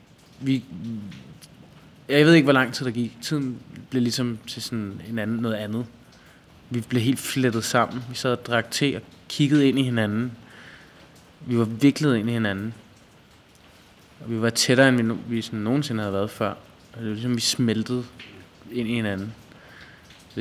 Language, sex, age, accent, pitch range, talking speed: Danish, male, 20-39, native, 110-125 Hz, 170 wpm